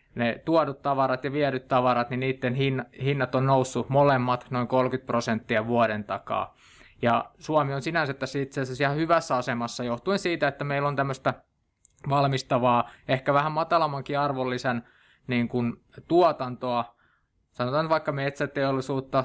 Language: Finnish